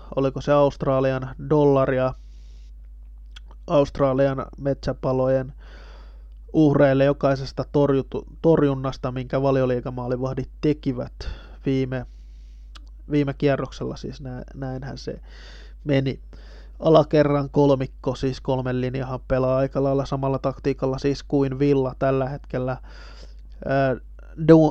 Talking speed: 85 wpm